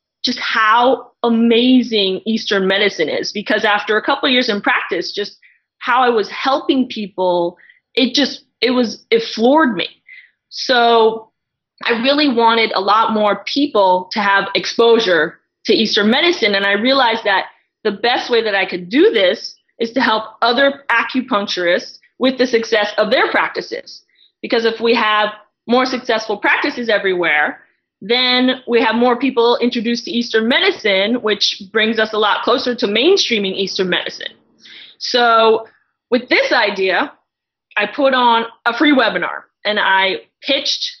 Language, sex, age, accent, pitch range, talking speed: English, female, 20-39, American, 210-255 Hz, 150 wpm